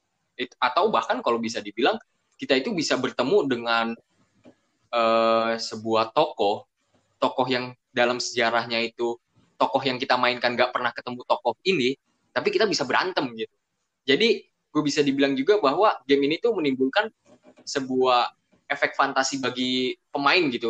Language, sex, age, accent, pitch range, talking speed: Indonesian, male, 20-39, native, 115-140 Hz, 140 wpm